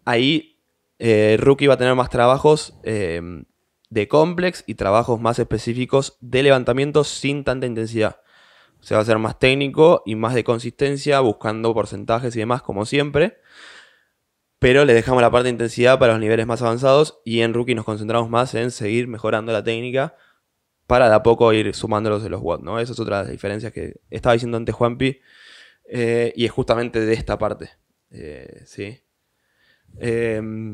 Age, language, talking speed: 20-39, Spanish, 180 wpm